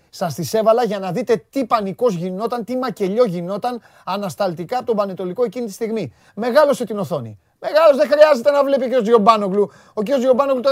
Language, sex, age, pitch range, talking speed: Greek, male, 30-49, 185-245 Hz, 180 wpm